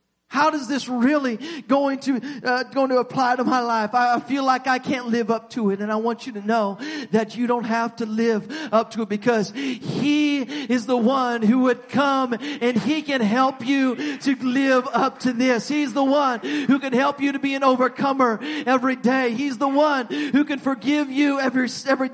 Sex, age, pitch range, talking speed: male, 40-59, 190-265 Hz, 210 wpm